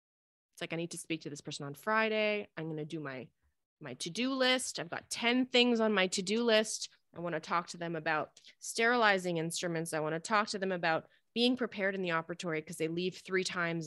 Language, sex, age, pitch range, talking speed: English, female, 20-39, 160-195 Hz, 220 wpm